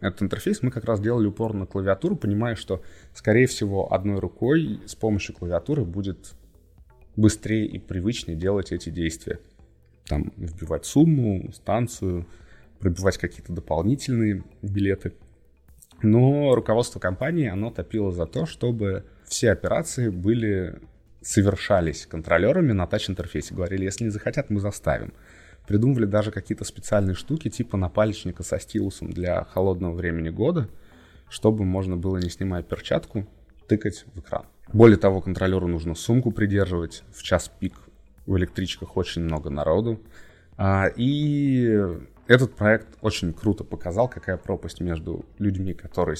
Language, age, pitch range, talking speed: Russian, 20-39, 85-110 Hz, 130 wpm